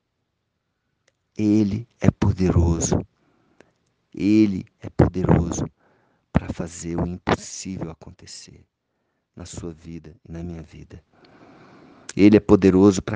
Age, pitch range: 50-69, 90-110 Hz